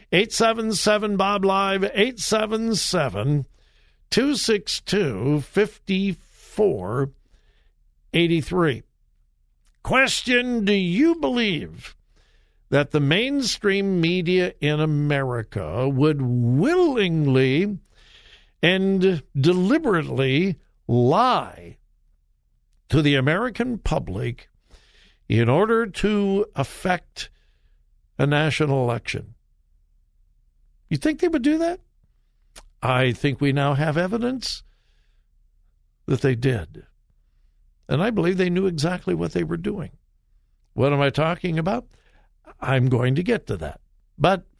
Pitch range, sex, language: 130-205 Hz, male, English